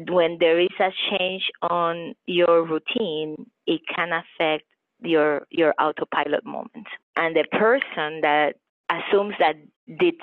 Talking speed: 130 wpm